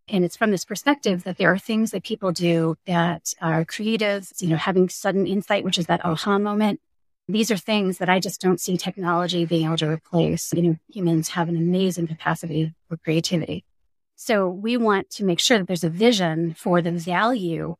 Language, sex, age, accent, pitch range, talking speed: English, female, 30-49, American, 175-205 Hz, 200 wpm